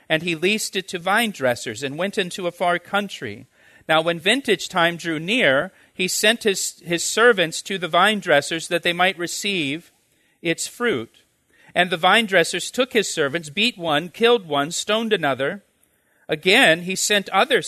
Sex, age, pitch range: male, 40-59, 150-200 Hz